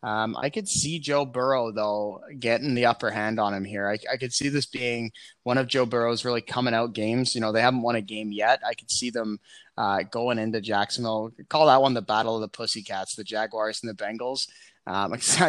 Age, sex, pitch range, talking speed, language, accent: 20-39, male, 110-130 Hz, 225 wpm, English, American